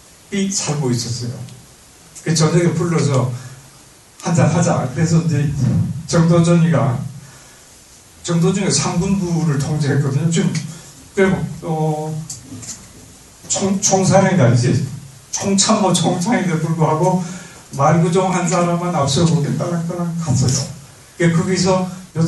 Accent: native